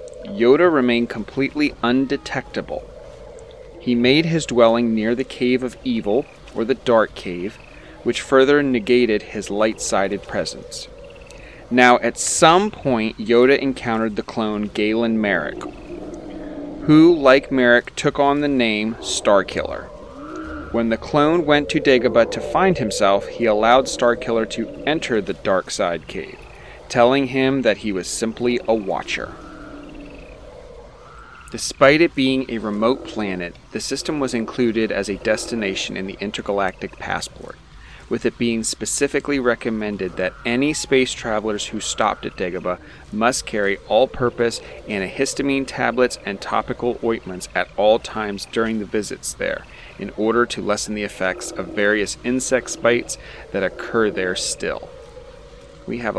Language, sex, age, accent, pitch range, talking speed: English, male, 30-49, American, 110-145 Hz, 135 wpm